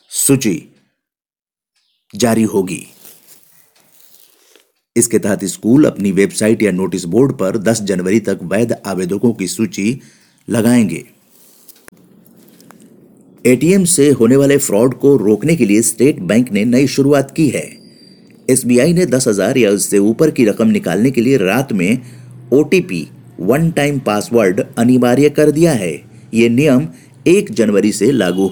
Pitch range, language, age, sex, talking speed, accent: 105-150 Hz, Hindi, 50-69, male, 135 wpm, native